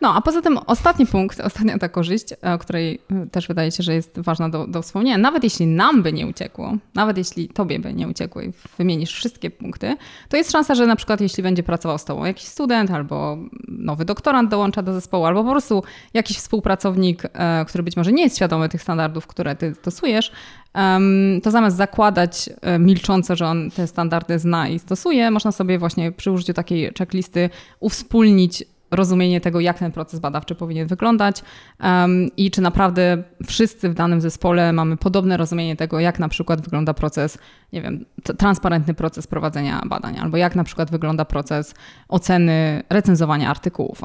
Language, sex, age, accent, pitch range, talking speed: Polish, female, 20-39, native, 165-205 Hz, 180 wpm